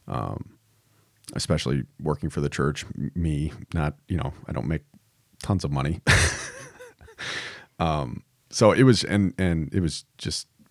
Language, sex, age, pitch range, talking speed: English, male, 30-49, 75-95 Hz, 140 wpm